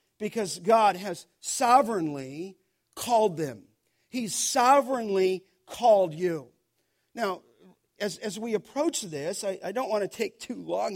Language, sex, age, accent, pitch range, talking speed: English, male, 50-69, American, 190-245 Hz, 130 wpm